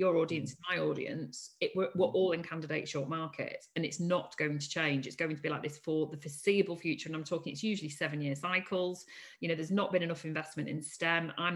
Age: 40-59